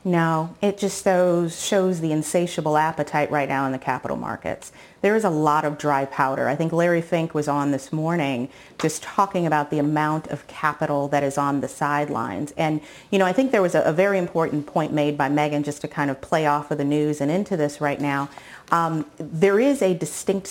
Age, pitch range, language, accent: 30-49, 150-195 Hz, English, American